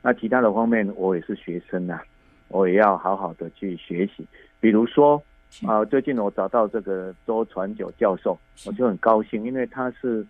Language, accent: Chinese, native